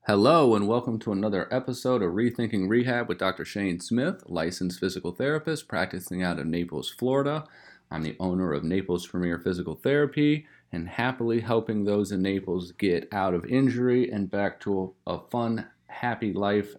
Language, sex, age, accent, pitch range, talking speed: English, male, 30-49, American, 90-115 Hz, 165 wpm